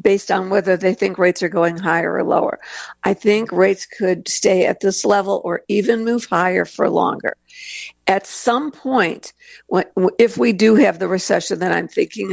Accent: American